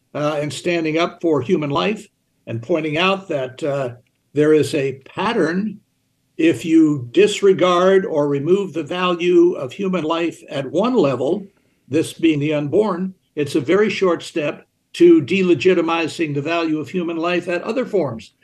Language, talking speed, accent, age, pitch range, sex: English, 155 wpm, American, 60-79, 165-195 Hz, male